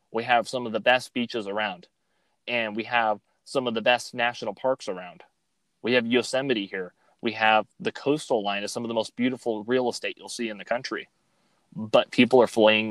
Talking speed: 205 wpm